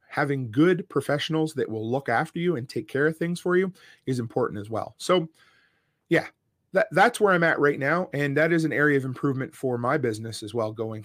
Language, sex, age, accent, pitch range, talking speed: English, male, 30-49, American, 120-165 Hz, 225 wpm